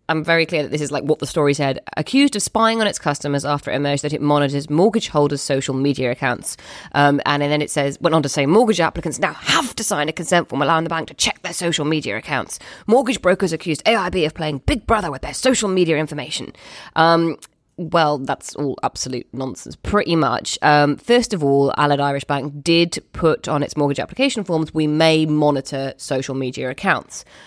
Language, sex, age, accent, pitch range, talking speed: English, female, 20-39, British, 140-175 Hz, 210 wpm